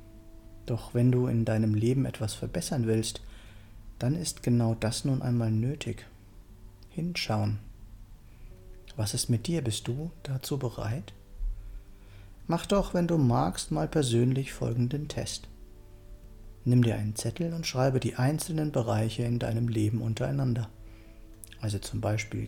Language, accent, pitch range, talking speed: German, German, 105-130 Hz, 135 wpm